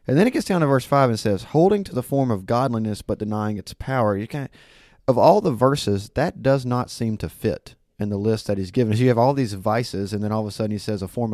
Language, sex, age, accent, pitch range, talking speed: English, male, 30-49, American, 100-120 Hz, 285 wpm